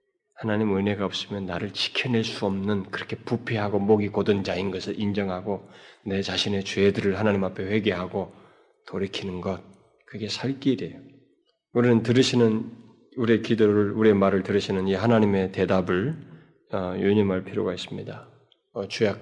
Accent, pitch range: native, 95-130 Hz